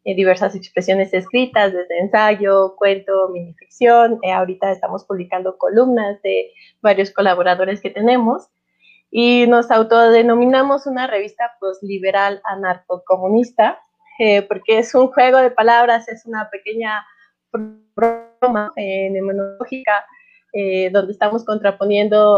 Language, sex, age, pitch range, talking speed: Spanish, female, 20-39, 195-230 Hz, 115 wpm